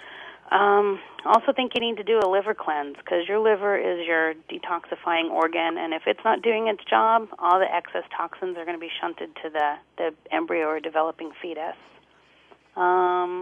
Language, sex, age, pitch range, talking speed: English, female, 40-59, 160-205 Hz, 185 wpm